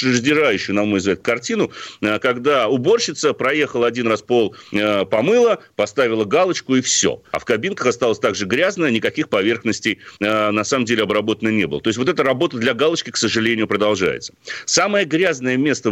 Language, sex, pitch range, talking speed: Russian, male, 110-150 Hz, 160 wpm